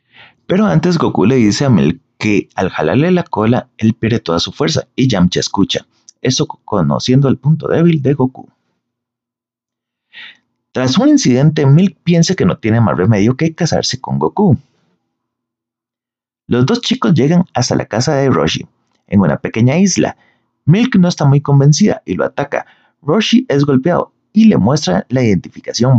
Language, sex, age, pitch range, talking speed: Spanish, male, 30-49, 120-170 Hz, 160 wpm